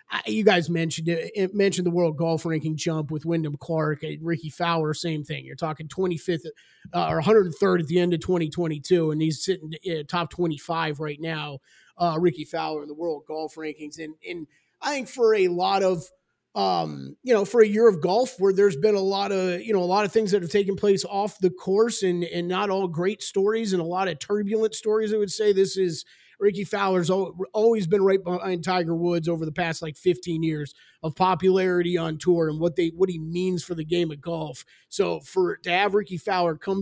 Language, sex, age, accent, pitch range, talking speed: English, male, 30-49, American, 170-210 Hz, 215 wpm